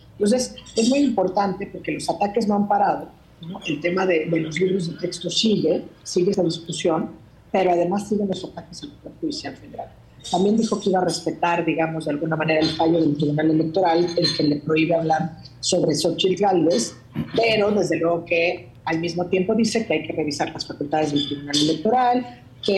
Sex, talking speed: female, 190 wpm